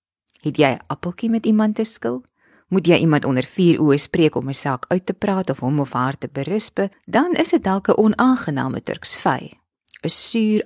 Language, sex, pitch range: English, female, 135-200 Hz